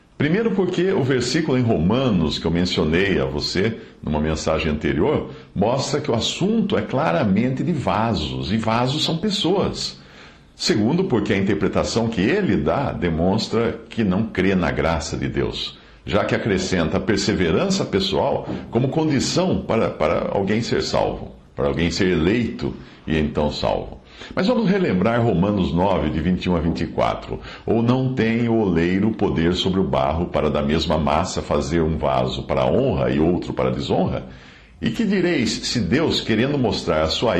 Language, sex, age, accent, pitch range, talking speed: Portuguese, male, 60-79, Brazilian, 75-130 Hz, 160 wpm